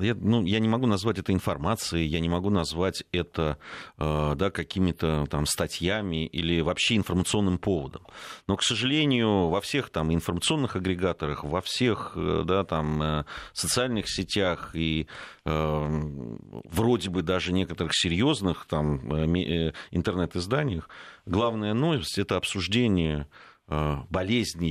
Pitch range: 80-100 Hz